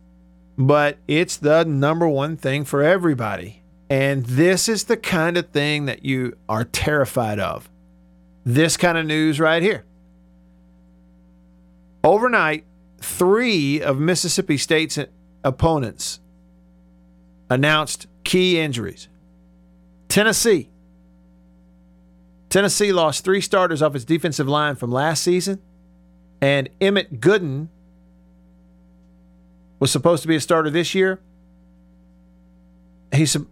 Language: English